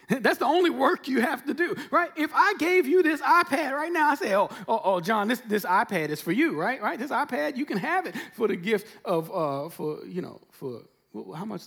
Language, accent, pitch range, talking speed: English, American, 215-330 Hz, 245 wpm